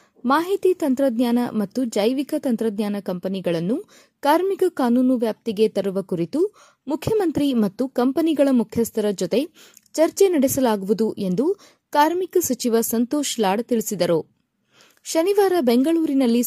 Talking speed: 95 wpm